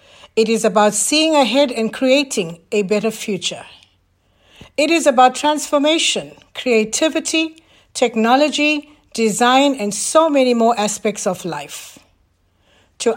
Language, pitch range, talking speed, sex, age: English, 180-270 Hz, 115 wpm, female, 60-79